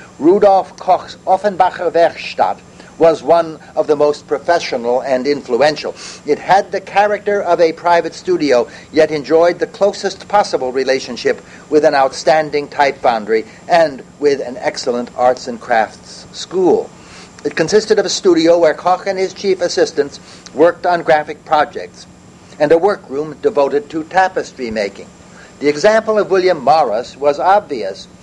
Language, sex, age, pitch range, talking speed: English, male, 60-79, 150-190 Hz, 145 wpm